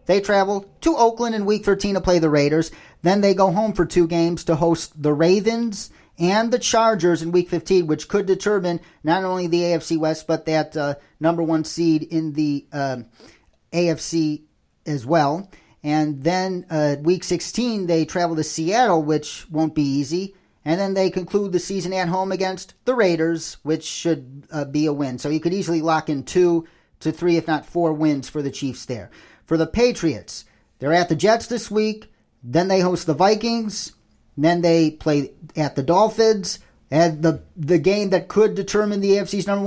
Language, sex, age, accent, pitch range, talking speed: English, male, 40-59, American, 155-195 Hz, 190 wpm